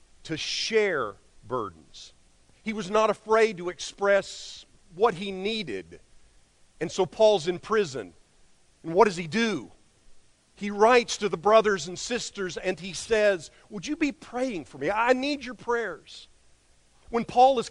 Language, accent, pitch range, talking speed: English, American, 170-230 Hz, 155 wpm